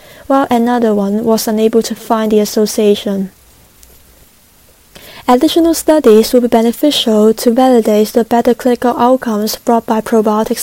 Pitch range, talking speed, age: 215-245 Hz, 130 wpm, 20-39